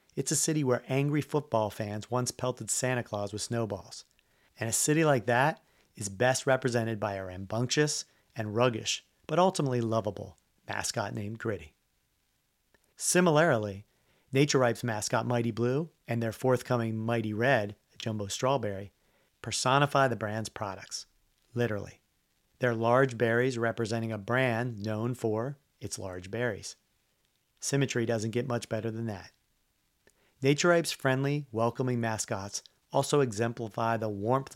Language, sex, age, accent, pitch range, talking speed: English, male, 40-59, American, 110-135 Hz, 130 wpm